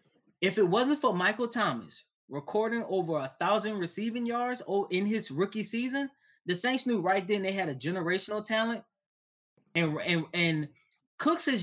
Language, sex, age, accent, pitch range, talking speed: English, male, 20-39, American, 165-245 Hz, 160 wpm